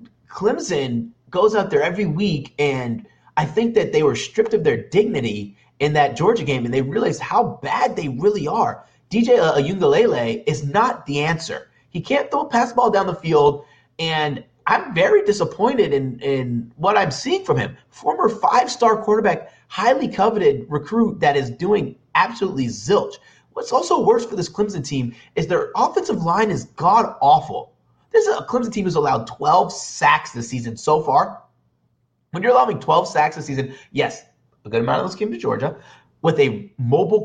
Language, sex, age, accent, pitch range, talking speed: English, male, 30-49, American, 130-220 Hz, 175 wpm